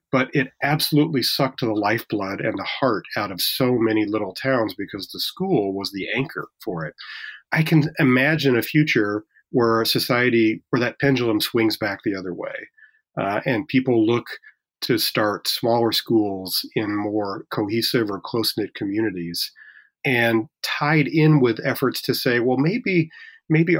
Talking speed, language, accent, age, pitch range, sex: 160 wpm, English, American, 40-59, 110-140 Hz, male